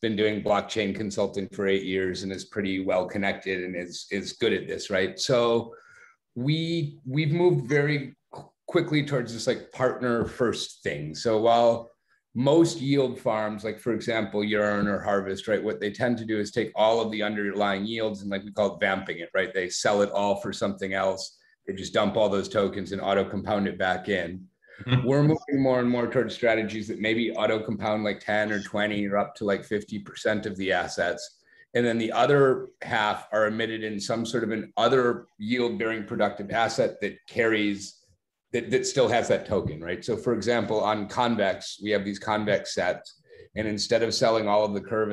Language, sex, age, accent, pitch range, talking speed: English, male, 30-49, American, 100-120 Hz, 200 wpm